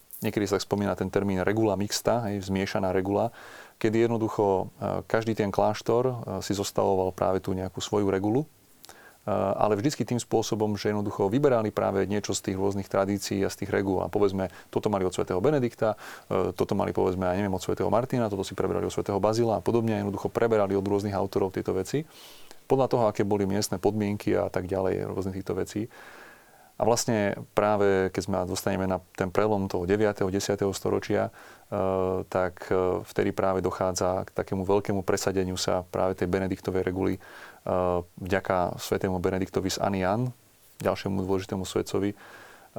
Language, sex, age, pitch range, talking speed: Slovak, male, 30-49, 95-105 Hz, 165 wpm